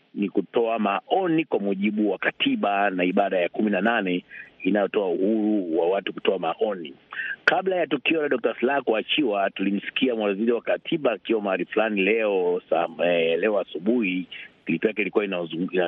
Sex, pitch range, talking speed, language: male, 105-140 Hz, 145 wpm, Swahili